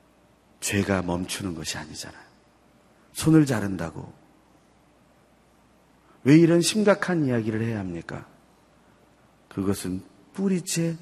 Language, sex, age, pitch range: Korean, male, 40-59, 110-175 Hz